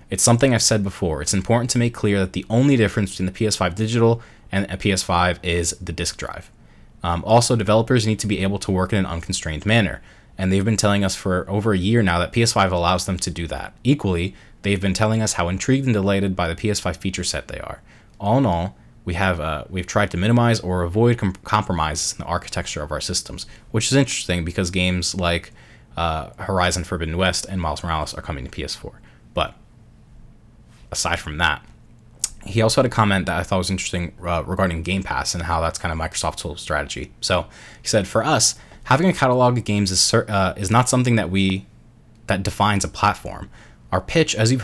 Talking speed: 210 wpm